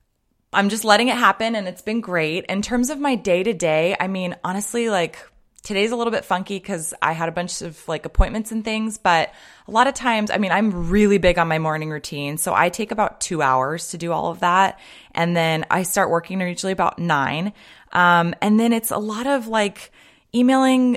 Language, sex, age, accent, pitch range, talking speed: English, female, 20-39, American, 155-205 Hz, 215 wpm